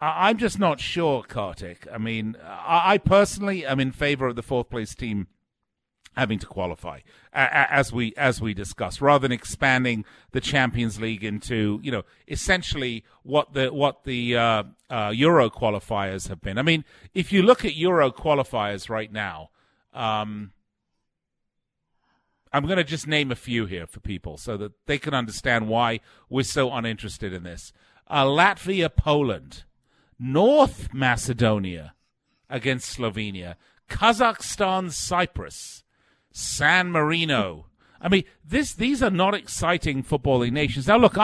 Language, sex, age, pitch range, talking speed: English, male, 50-69, 105-145 Hz, 145 wpm